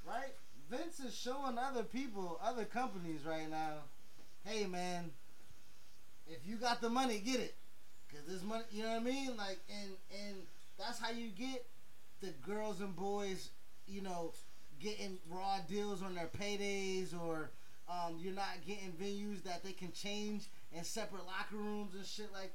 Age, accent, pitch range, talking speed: 20-39, American, 180-230 Hz, 170 wpm